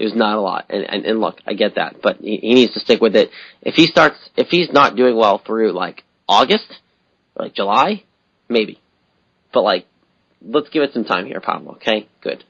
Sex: male